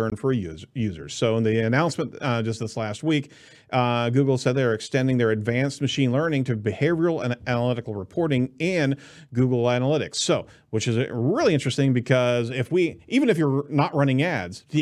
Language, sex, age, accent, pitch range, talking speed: English, male, 40-59, American, 115-145 Hz, 175 wpm